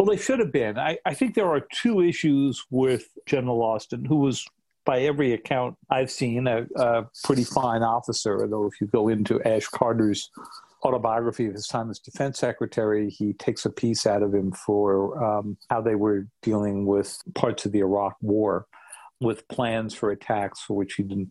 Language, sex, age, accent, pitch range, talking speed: English, male, 50-69, American, 110-145 Hz, 190 wpm